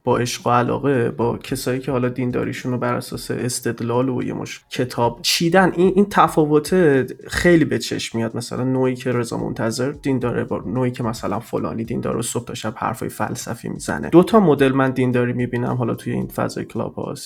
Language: Persian